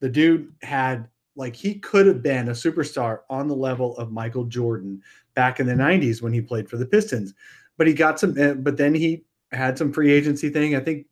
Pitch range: 120-150 Hz